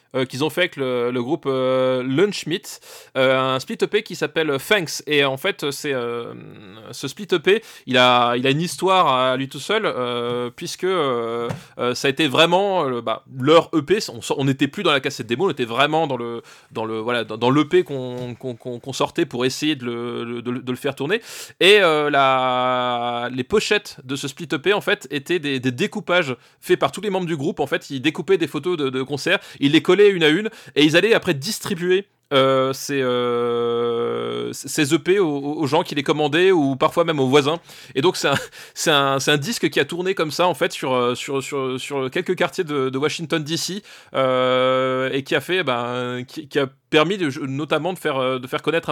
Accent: French